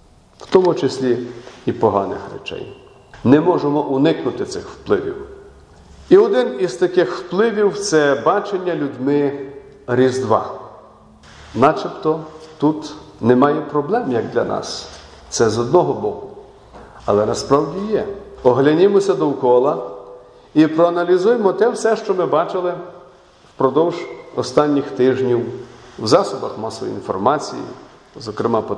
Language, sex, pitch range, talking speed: Ukrainian, male, 140-195 Hz, 110 wpm